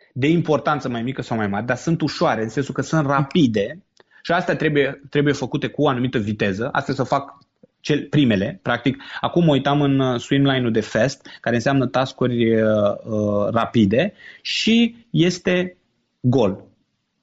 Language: Romanian